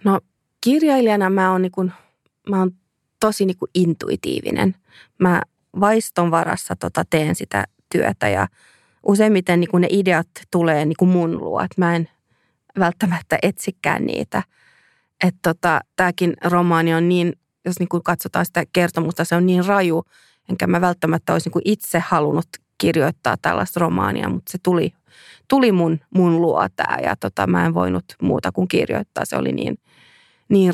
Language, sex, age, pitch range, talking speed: Finnish, female, 30-49, 160-185 Hz, 150 wpm